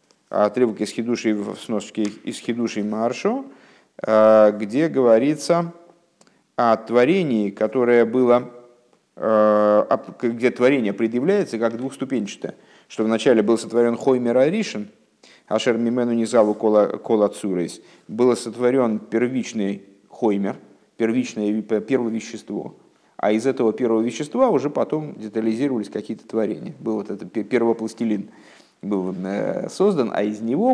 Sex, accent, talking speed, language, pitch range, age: male, native, 105 wpm, Russian, 105-130 Hz, 50-69